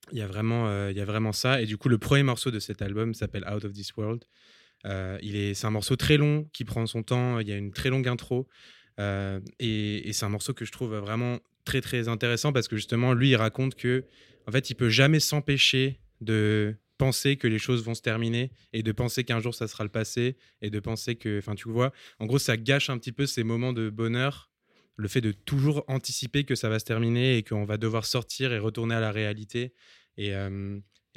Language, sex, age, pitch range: French, male, 20-39, 105-125 Hz